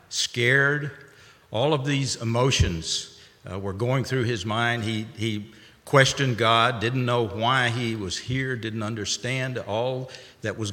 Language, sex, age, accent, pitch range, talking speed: English, male, 50-69, American, 105-135 Hz, 145 wpm